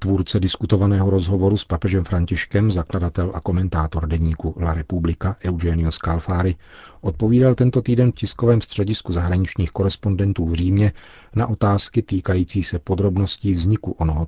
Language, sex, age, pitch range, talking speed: Czech, male, 40-59, 85-105 Hz, 130 wpm